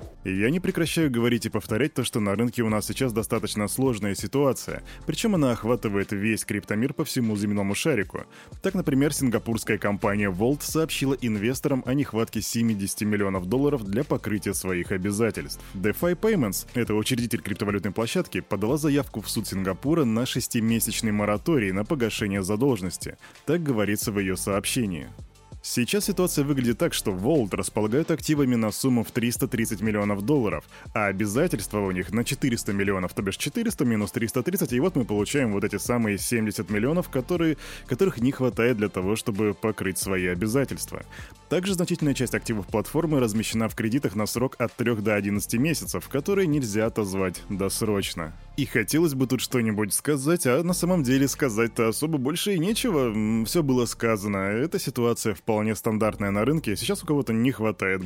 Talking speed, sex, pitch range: 160 wpm, male, 105-140 Hz